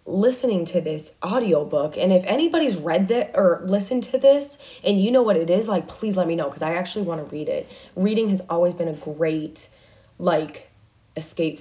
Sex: female